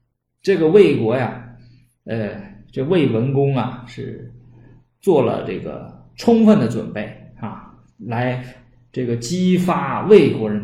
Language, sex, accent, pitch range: Chinese, male, native, 115-145 Hz